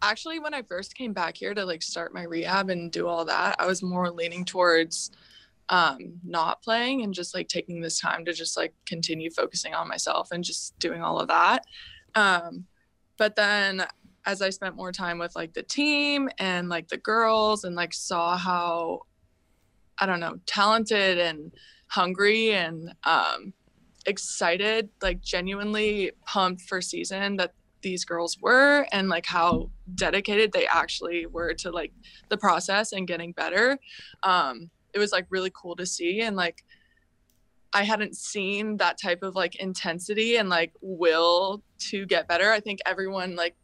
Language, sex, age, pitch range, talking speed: English, female, 20-39, 170-205 Hz, 170 wpm